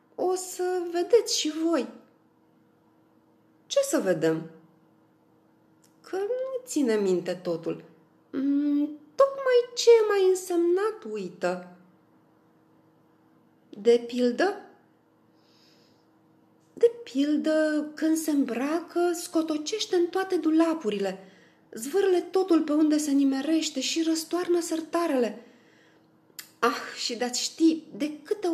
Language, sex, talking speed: Romanian, female, 95 wpm